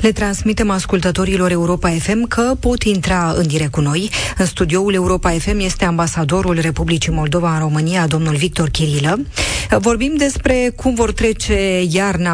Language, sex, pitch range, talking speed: Romanian, female, 165-215 Hz, 150 wpm